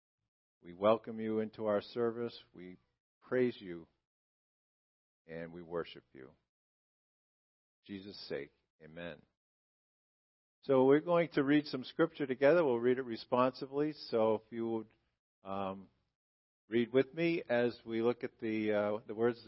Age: 50-69